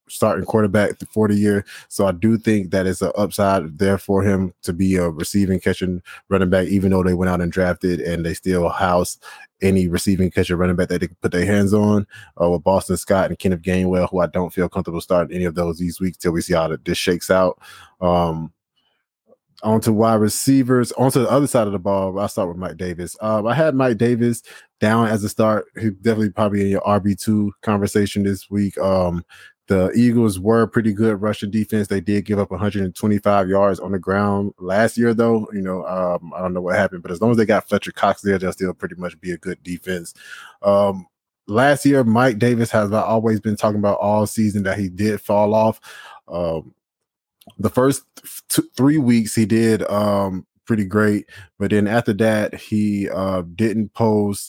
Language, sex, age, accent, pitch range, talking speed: English, male, 20-39, American, 90-110 Hz, 210 wpm